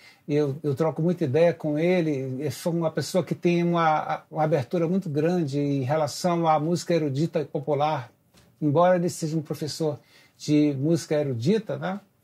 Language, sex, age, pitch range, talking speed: Portuguese, male, 60-79, 150-180 Hz, 165 wpm